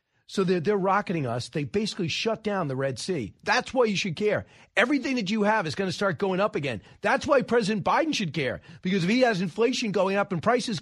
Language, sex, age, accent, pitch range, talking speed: English, male, 40-59, American, 165-205 Hz, 240 wpm